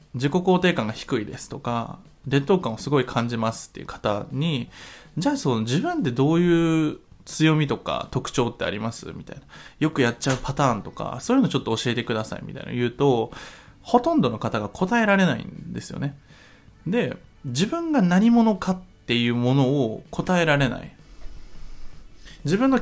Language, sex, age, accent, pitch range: Japanese, male, 20-39, native, 120-185 Hz